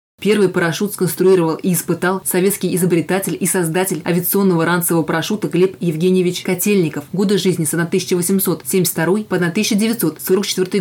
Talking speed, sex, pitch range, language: 115 wpm, female, 170-195 Hz, Russian